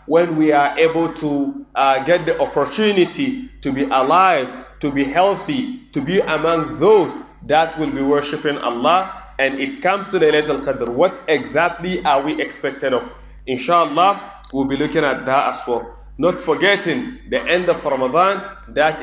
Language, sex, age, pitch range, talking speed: English, male, 30-49, 140-180 Hz, 165 wpm